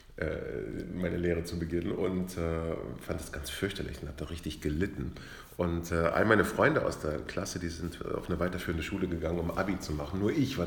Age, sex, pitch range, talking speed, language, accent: 40-59, male, 80-95 Hz, 200 wpm, German, German